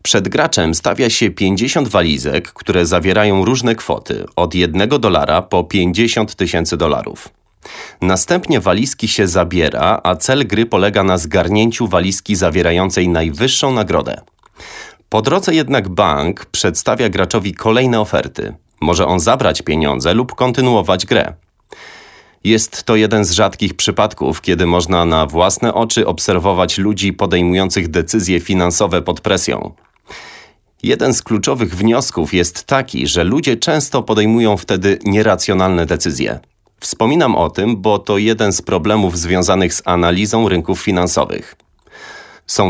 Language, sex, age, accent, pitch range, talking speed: Polish, male, 30-49, native, 90-110 Hz, 130 wpm